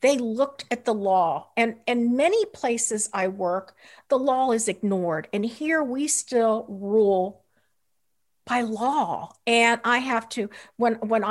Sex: female